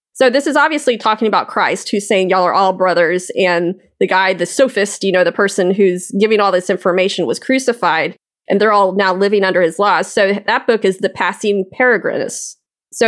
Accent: American